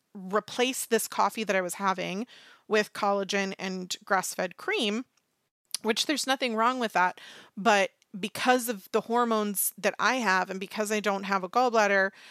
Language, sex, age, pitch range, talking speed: English, female, 30-49, 190-240 Hz, 160 wpm